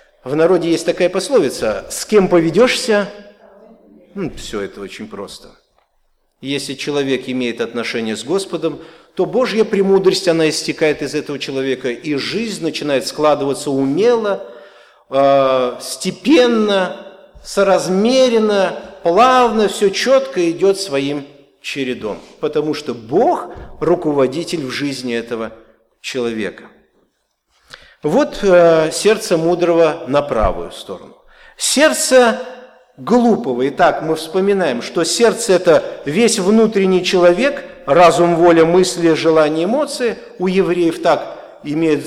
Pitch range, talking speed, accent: 150-215 Hz, 110 wpm, native